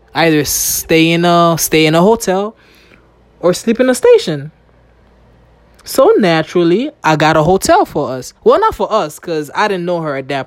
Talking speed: 185 wpm